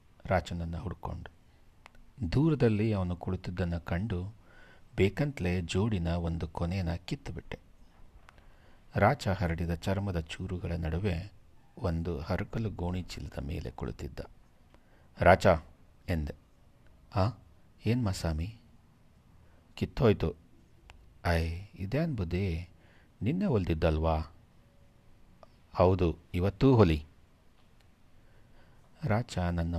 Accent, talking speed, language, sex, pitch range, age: native, 75 wpm, Kannada, male, 80-100 Hz, 60-79